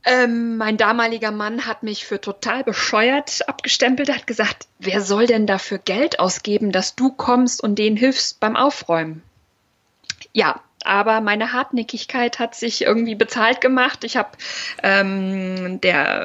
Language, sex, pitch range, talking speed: German, female, 200-245 Hz, 145 wpm